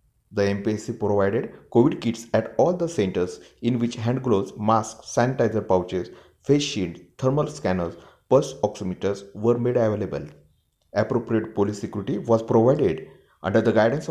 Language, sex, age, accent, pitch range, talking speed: Marathi, male, 30-49, native, 100-120 Hz, 140 wpm